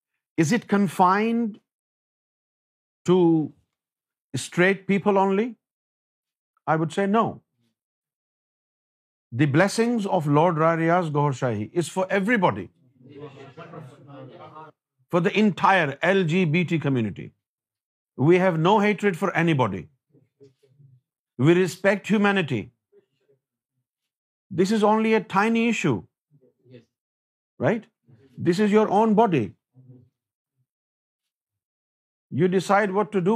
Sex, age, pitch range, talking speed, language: male, 50-69, 135-200 Hz, 90 wpm, Urdu